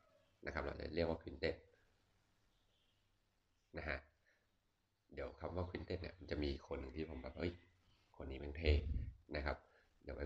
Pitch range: 75-95 Hz